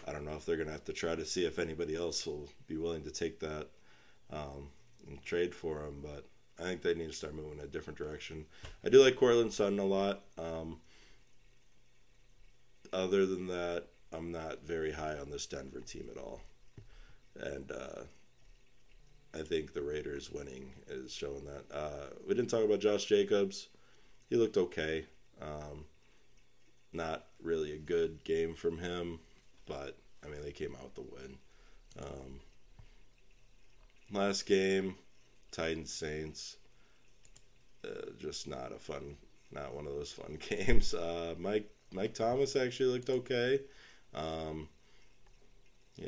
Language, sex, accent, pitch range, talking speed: English, male, American, 75-100 Hz, 155 wpm